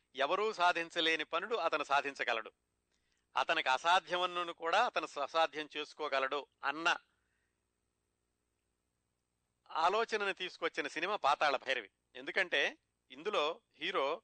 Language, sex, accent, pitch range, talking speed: Telugu, male, native, 135-180 Hz, 85 wpm